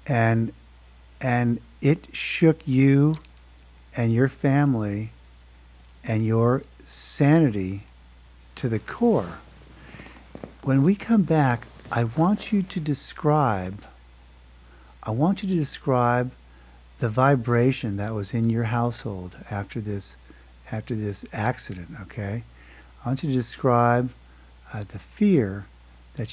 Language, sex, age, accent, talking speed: English, male, 50-69, American, 115 wpm